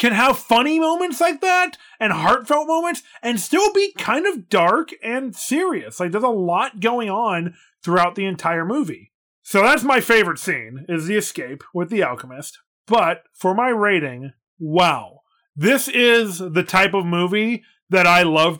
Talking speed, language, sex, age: 170 wpm, English, male, 30-49